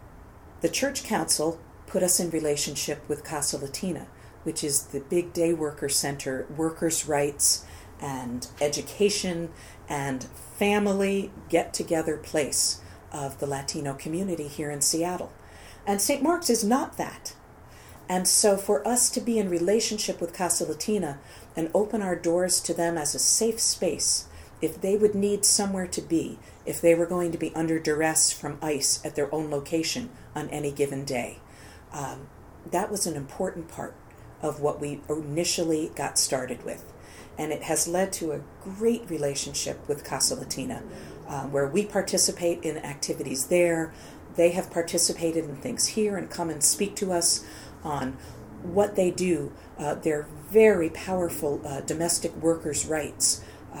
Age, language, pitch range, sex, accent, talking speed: 40-59, English, 145-185 Hz, female, American, 155 wpm